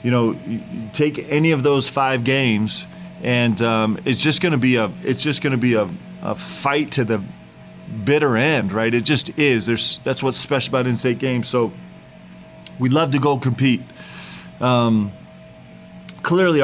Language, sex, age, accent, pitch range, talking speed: English, male, 30-49, American, 110-135 Hz, 175 wpm